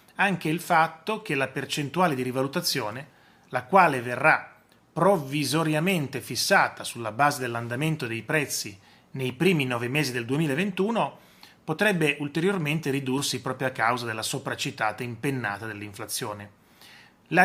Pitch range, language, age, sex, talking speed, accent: 130-190 Hz, Italian, 30-49, male, 120 wpm, native